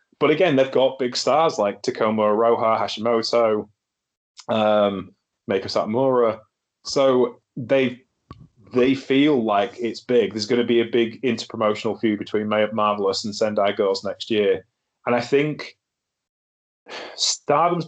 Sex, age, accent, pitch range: male, 20-39, British, 105-130 Hz